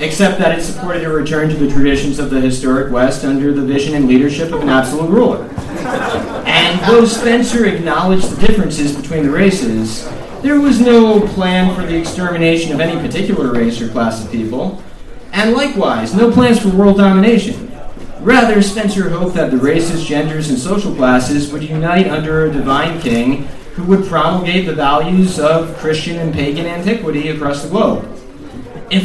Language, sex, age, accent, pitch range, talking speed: English, male, 30-49, American, 135-190 Hz, 170 wpm